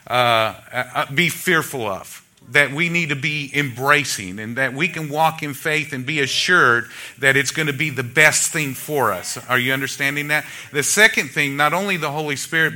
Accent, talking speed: American, 200 wpm